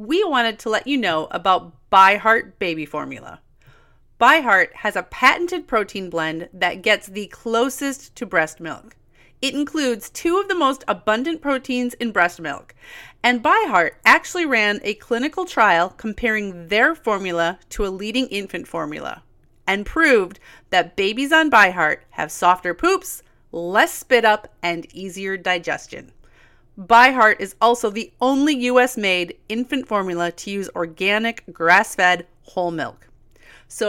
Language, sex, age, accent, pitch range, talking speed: English, female, 30-49, American, 190-270 Hz, 140 wpm